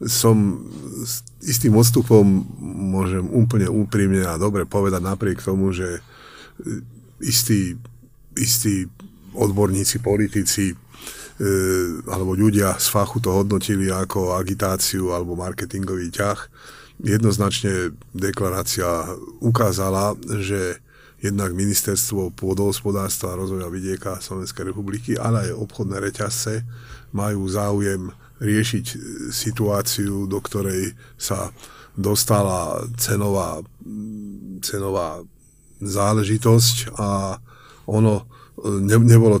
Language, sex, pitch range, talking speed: Slovak, male, 95-110 Hz, 85 wpm